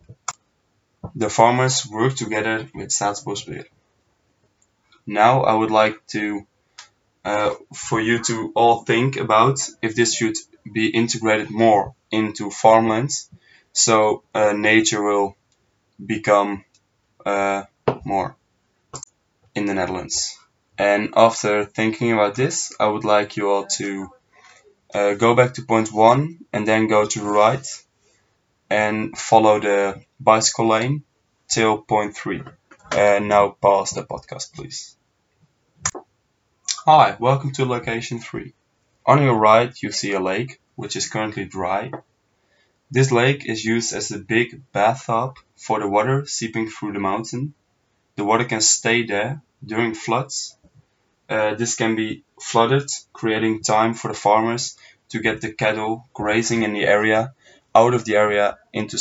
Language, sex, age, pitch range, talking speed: English, male, 20-39, 105-120 Hz, 135 wpm